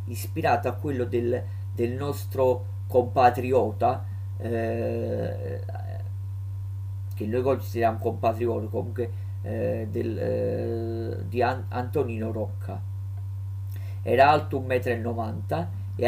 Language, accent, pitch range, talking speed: Italian, native, 95-115 Hz, 95 wpm